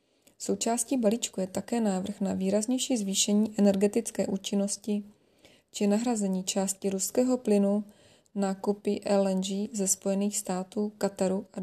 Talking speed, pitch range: 115 wpm, 195-215 Hz